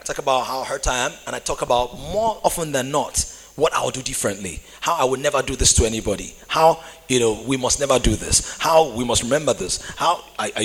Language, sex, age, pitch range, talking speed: English, male, 30-49, 110-155 Hz, 230 wpm